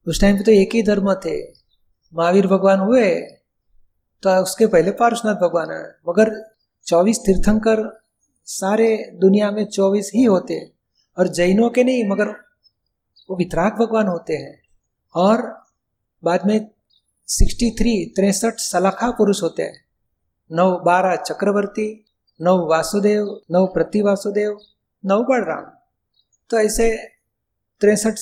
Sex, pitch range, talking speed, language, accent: male, 185-225 Hz, 125 wpm, Hindi, native